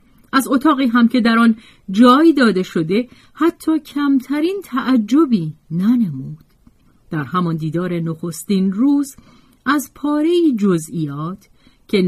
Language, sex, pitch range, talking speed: Persian, female, 165-260 Hz, 110 wpm